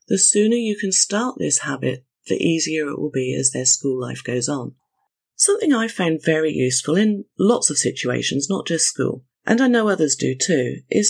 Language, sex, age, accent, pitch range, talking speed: English, female, 40-59, British, 145-245 Hz, 200 wpm